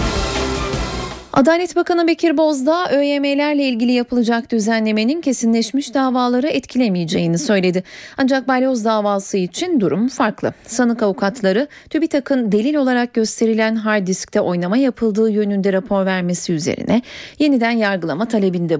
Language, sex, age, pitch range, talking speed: Turkish, female, 30-49, 200-270 Hz, 110 wpm